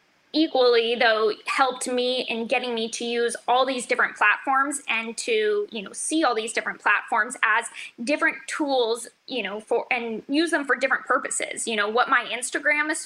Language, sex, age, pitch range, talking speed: English, female, 10-29, 220-265 Hz, 185 wpm